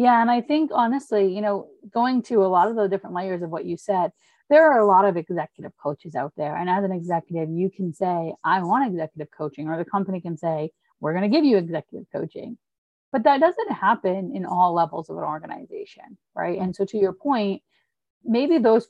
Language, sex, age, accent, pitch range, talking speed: English, female, 30-49, American, 175-225 Hz, 220 wpm